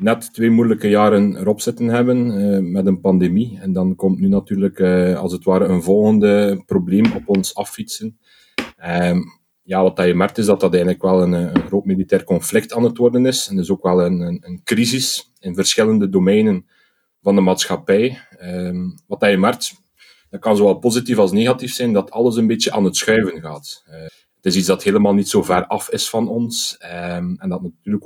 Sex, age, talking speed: male, 30-49, 205 wpm